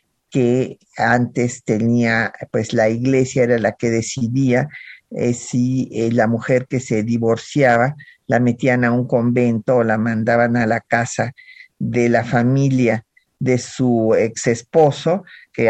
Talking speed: 140 wpm